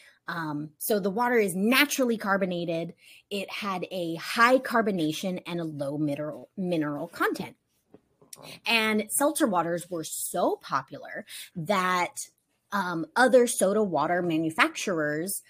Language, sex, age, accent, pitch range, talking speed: English, female, 30-49, American, 155-220 Hz, 115 wpm